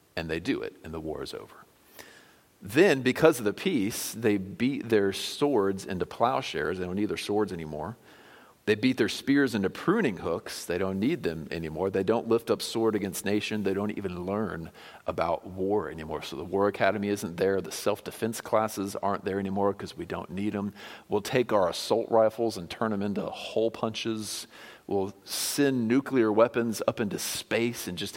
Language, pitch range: English, 100-120 Hz